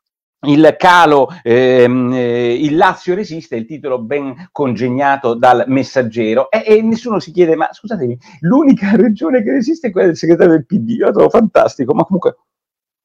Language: Italian